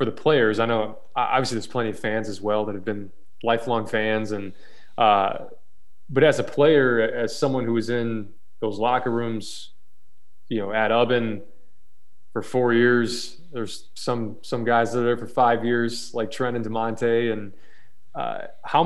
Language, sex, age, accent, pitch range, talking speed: English, male, 20-39, American, 110-130 Hz, 175 wpm